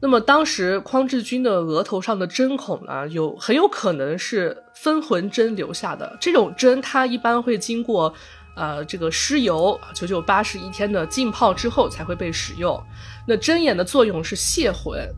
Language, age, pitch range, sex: Chinese, 20-39, 170-250 Hz, female